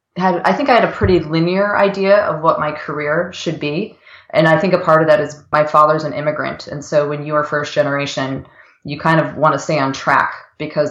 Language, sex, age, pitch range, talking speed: English, female, 20-39, 145-165 Hz, 235 wpm